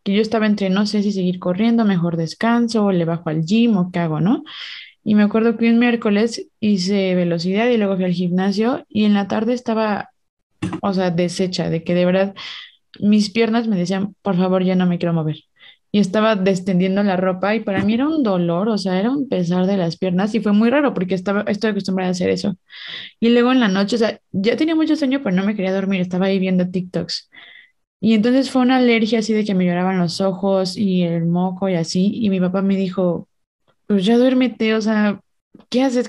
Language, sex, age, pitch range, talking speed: Spanish, female, 20-39, 185-225 Hz, 225 wpm